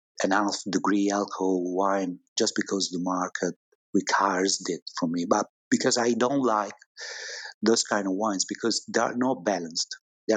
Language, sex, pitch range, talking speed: English, male, 100-135 Hz, 160 wpm